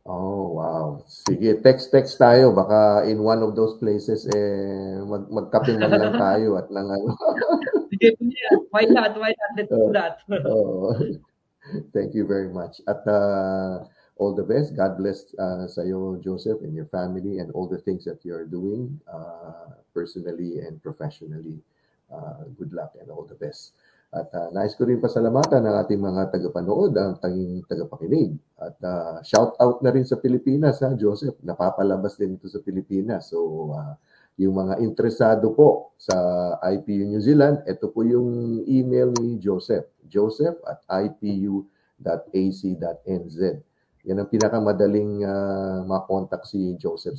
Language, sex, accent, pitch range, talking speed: Filipino, male, native, 95-120 Hz, 145 wpm